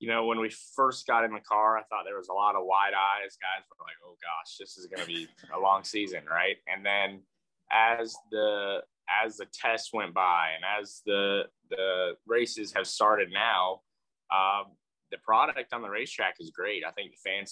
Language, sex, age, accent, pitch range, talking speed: English, male, 20-39, American, 95-110 Hz, 210 wpm